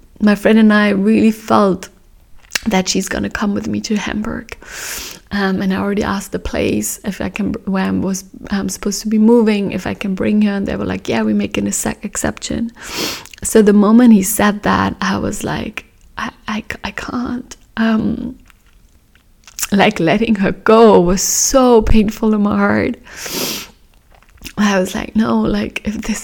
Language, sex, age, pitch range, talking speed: English, female, 20-39, 195-220 Hz, 180 wpm